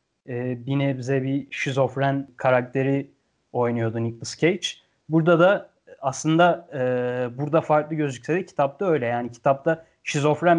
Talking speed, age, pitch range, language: 115 wpm, 30-49, 130-165 Hz, Turkish